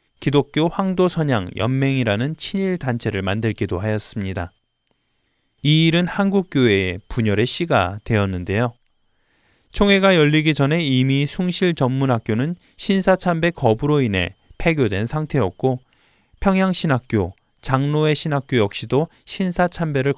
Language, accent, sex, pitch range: Korean, native, male, 110-160 Hz